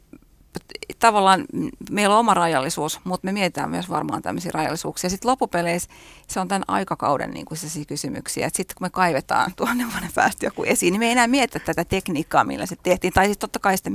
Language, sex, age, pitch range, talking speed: Finnish, female, 30-49, 175-220 Hz, 190 wpm